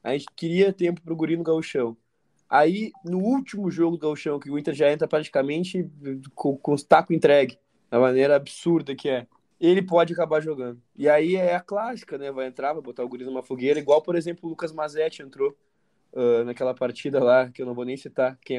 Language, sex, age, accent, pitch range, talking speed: Portuguese, male, 20-39, Brazilian, 125-160 Hz, 215 wpm